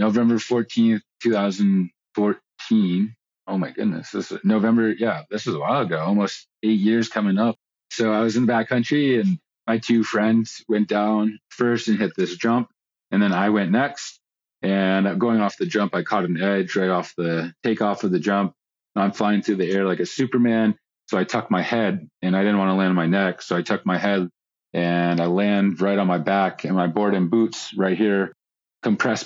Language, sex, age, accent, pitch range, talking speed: English, male, 30-49, American, 100-115 Hz, 205 wpm